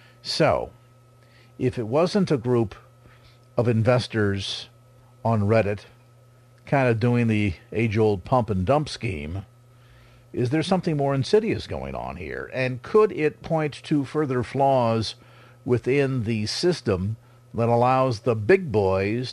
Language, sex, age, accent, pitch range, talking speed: English, male, 50-69, American, 115-130 Hz, 125 wpm